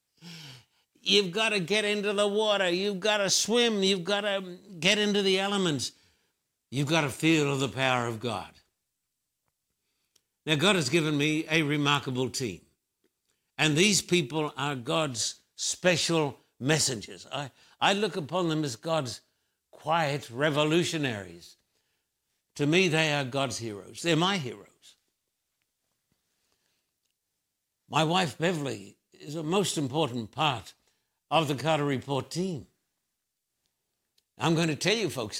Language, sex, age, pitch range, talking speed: English, male, 60-79, 135-185 Hz, 130 wpm